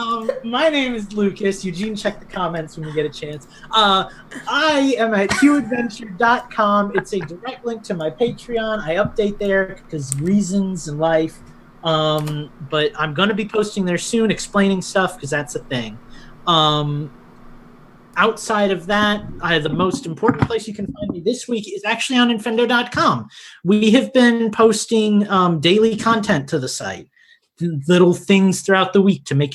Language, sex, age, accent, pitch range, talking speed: English, male, 30-49, American, 155-220 Hz, 170 wpm